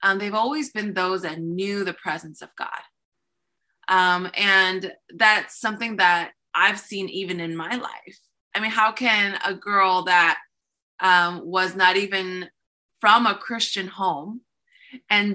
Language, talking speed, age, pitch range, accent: English, 150 wpm, 20-39, 185-220 Hz, American